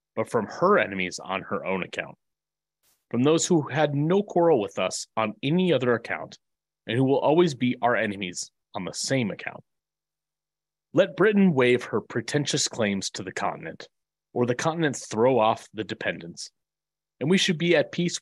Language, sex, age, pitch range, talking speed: English, male, 30-49, 110-160 Hz, 175 wpm